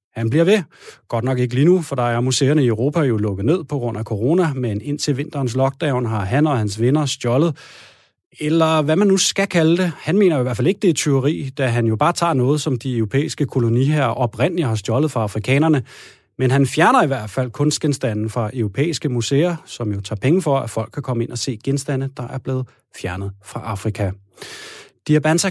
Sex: male